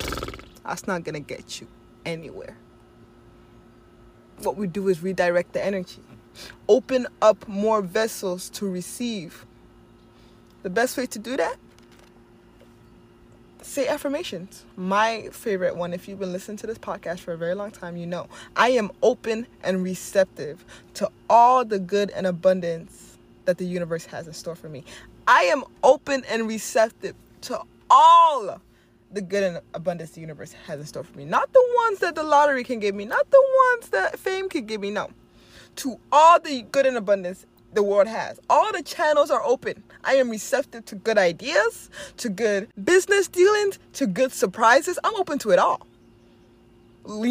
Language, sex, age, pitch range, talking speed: English, female, 20-39, 175-285 Hz, 170 wpm